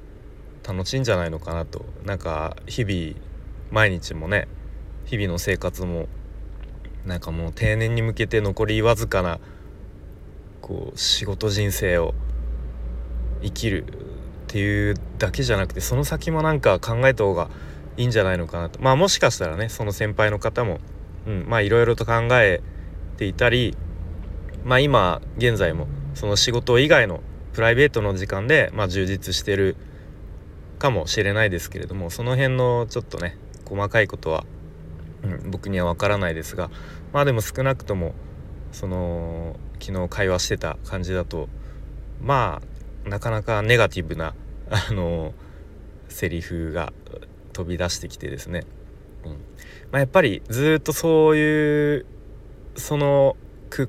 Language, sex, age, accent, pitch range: Japanese, male, 30-49, native, 80-110 Hz